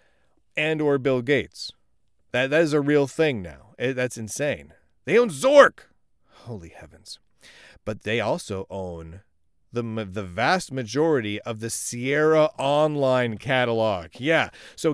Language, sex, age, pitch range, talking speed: English, male, 40-59, 100-160 Hz, 135 wpm